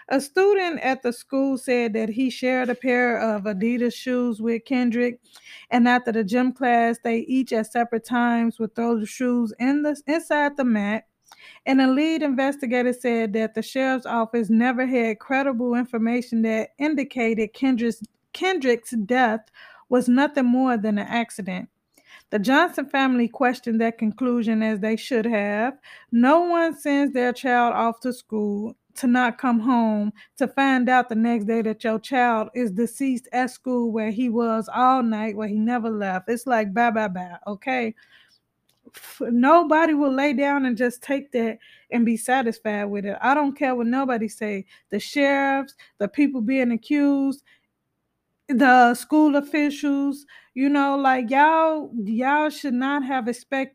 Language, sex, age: English, female, 20-39